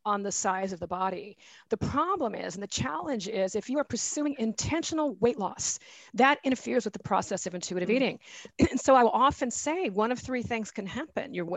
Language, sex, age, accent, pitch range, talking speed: English, female, 50-69, American, 200-265 Hz, 215 wpm